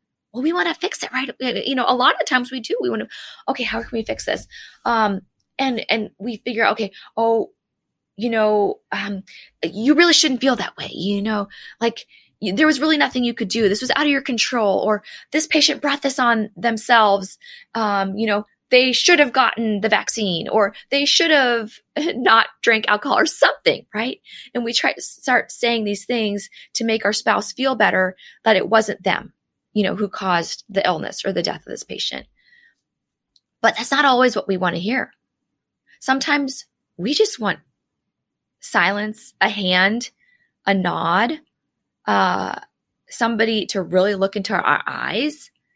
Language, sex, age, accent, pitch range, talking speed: English, female, 20-39, American, 205-270 Hz, 185 wpm